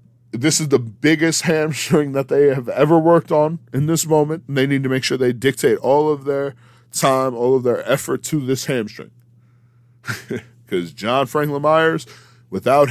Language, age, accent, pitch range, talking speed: English, 40-59, American, 120-145 Hz, 175 wpm